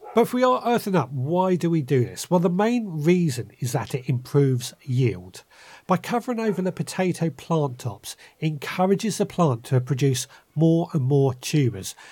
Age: 40-59